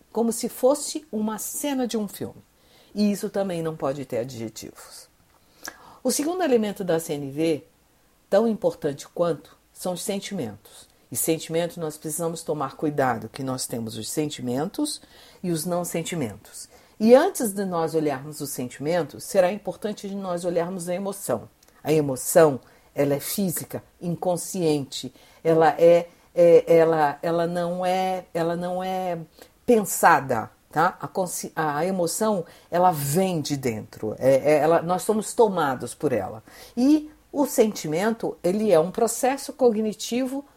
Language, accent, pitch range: Portuguese, Brazilian, 150-215 Hz